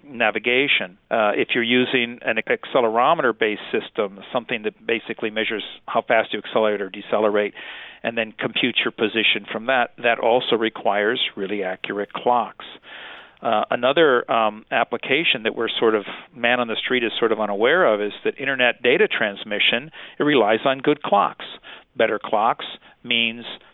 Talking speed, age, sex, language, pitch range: 155 wpm, 50-69, male, English, 110-130 Hz